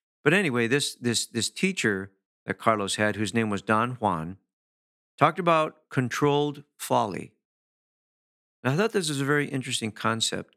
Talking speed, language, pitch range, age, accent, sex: 155 wpm, English, 100-135 Hz, 50-69, American, male